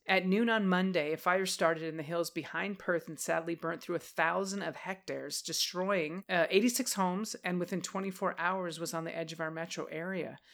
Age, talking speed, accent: 30-49, 205 wpm, American